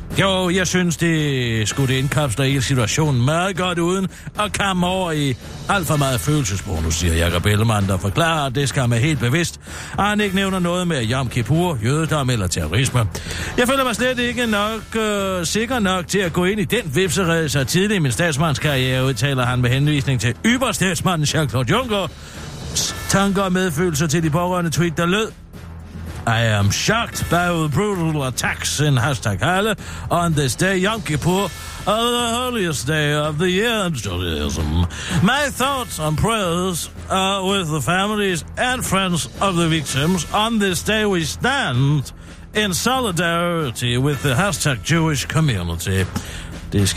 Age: 60-79